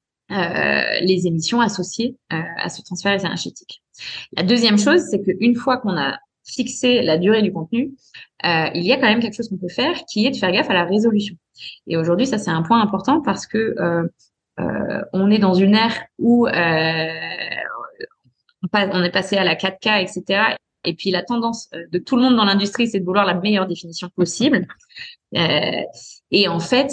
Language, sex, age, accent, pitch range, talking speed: French, female, 20-39, French, 175-230 Hz, 195 wpm